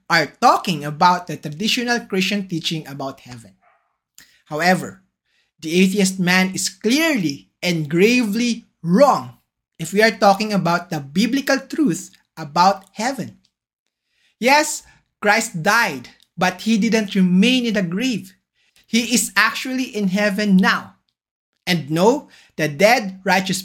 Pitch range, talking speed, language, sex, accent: 170-225 Hz, 125 wpm, English, male, Filipino